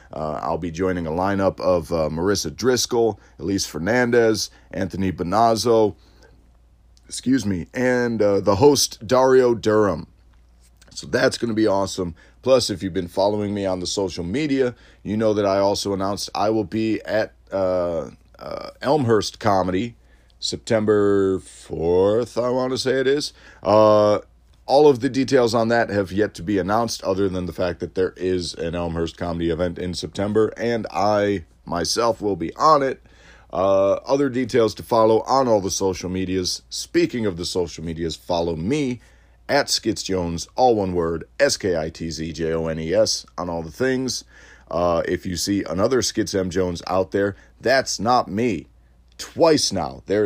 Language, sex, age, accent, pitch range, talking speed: English, male, 40-59, American, 85-110 Hz, 160 wpm